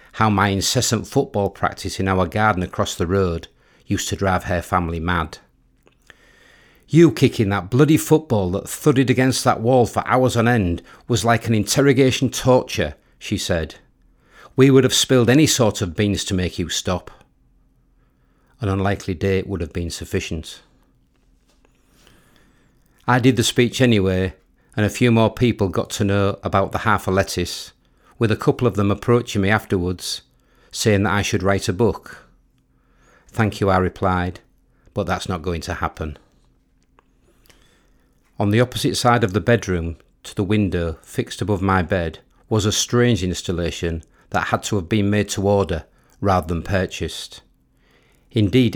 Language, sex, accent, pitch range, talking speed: English, male, British, 85-110 Hz, 160 wpm